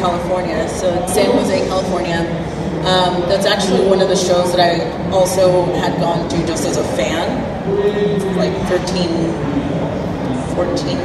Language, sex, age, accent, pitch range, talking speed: English, female, 30-49, American, 170-195 Hz, 135 wpm